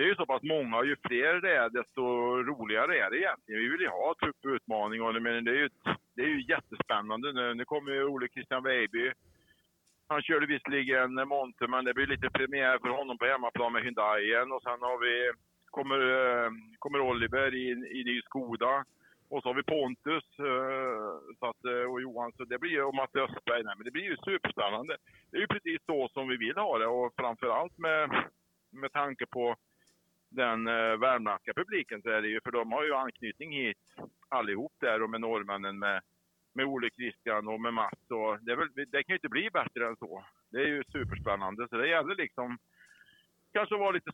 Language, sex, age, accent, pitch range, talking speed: Swedish, male, 50-69, Norwegian, 115-140 Hz, 205 wpm